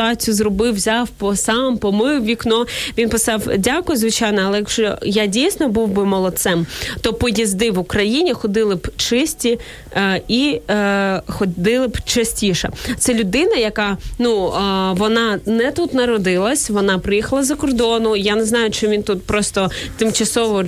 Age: 20-39